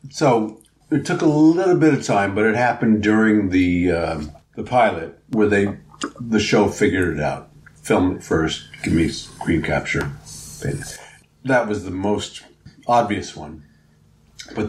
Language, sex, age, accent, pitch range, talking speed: English, male, 50-69, American, 95-120 Hz, 150 wpm